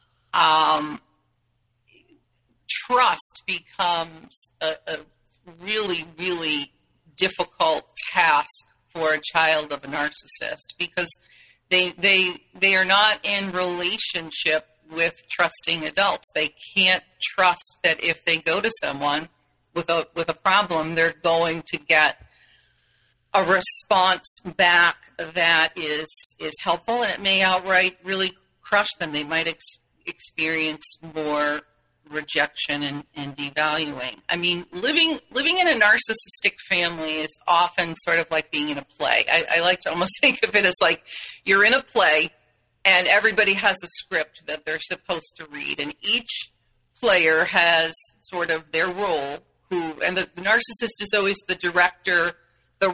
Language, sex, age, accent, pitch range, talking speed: English, female, 40-59, American, 155-190 Hz, 145 wpm